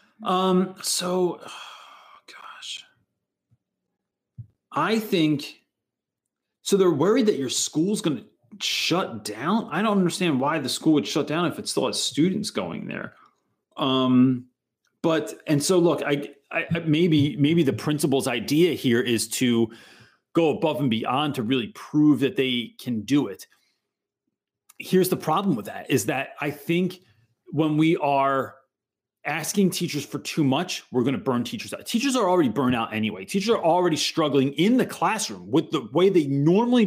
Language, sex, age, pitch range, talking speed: English, male, 30-49, 135-190 Hz, 160 wpm